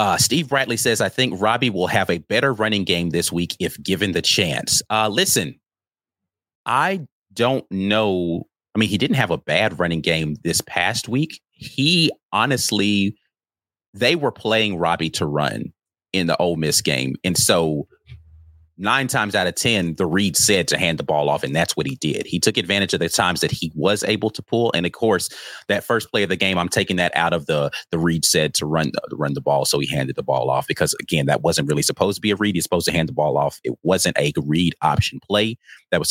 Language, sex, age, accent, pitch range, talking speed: English, male, 30-49, American, 85-110 Hz, 225 wpm